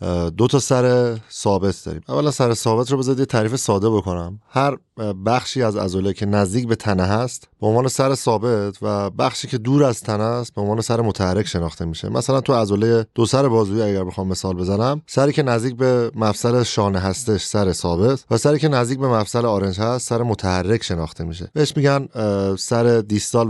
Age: 30-49